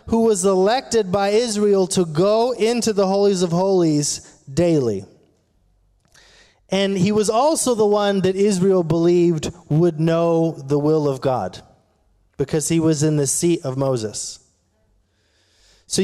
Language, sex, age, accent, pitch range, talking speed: English, male, 30-49, American, 145-230 Hz, 140 wpm